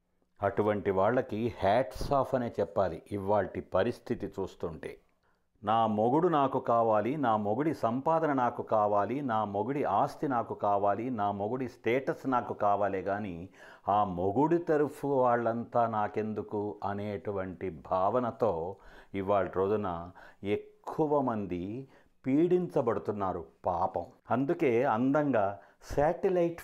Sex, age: male, 50-69